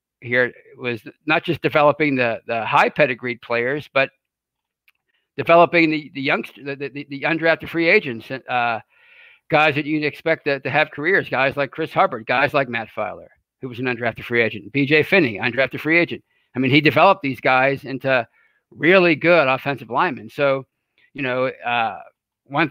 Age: 50-69